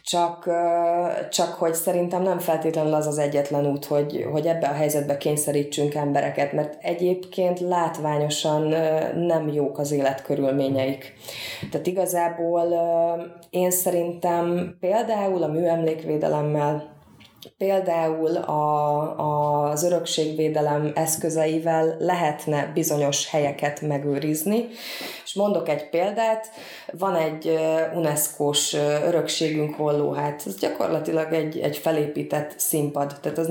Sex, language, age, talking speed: female, Hungarian, 20-39, 105 wpm